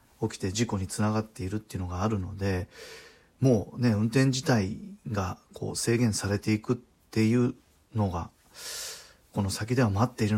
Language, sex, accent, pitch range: Japanese, male, native, 100-120 Hz